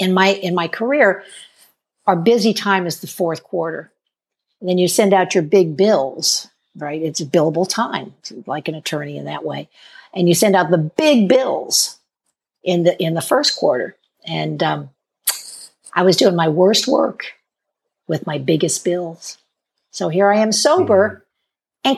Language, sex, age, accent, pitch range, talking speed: English, female, 60-79, American, 170-245 Hz, 170 wpm